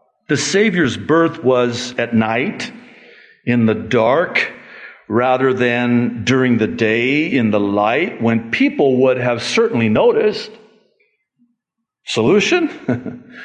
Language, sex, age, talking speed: English, male, 60-79, 105 wpm